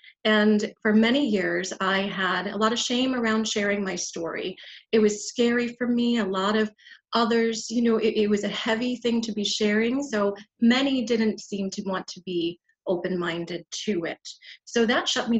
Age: 30-49